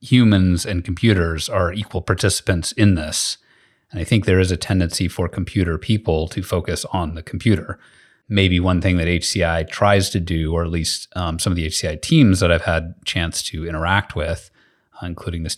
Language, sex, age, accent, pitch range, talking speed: English, male, 30-49, American, 80-95 Hz, 195 wpm